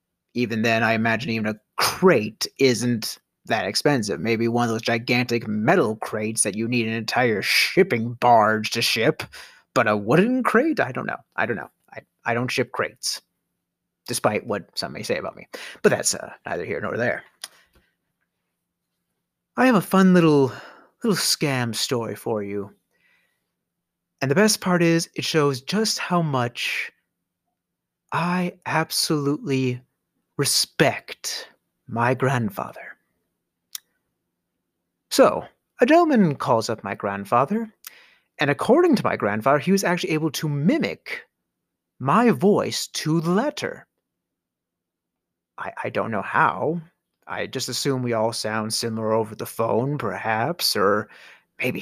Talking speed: 140 wpm